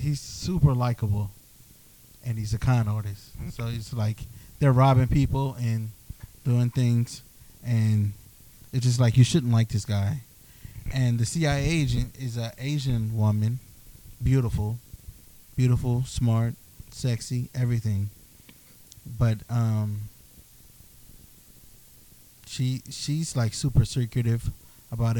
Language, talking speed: English, 110 wpm